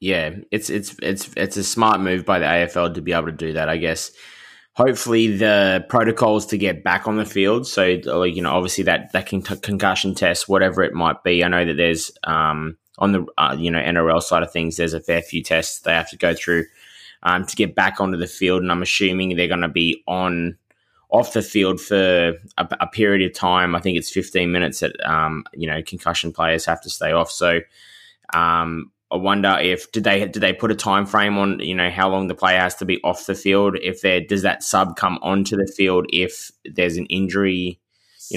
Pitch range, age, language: 85-95 Hz, 20-39, English